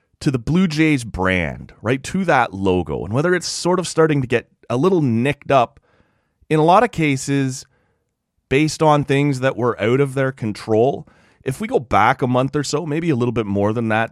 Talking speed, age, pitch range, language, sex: 215 wpm, 30-49, 100-140 Hz, English, male